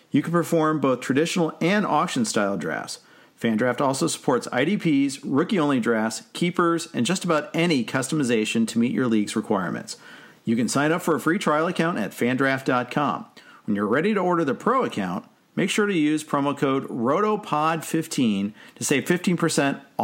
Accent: American